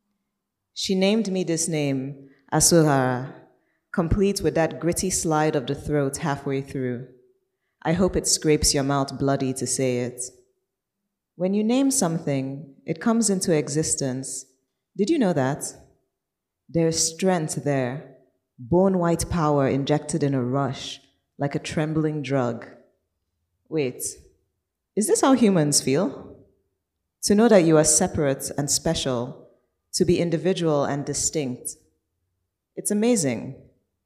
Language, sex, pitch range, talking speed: English, female, 130-170 Hz, 125 wpm